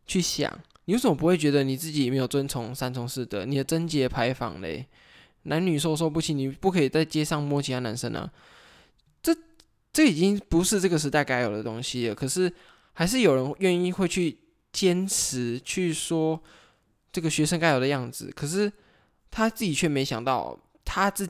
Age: 10-29